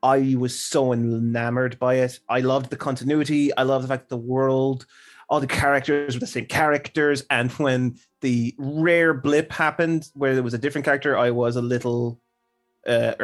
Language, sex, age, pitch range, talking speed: English, male, 30-49, 125-160 Hz, 185 wpm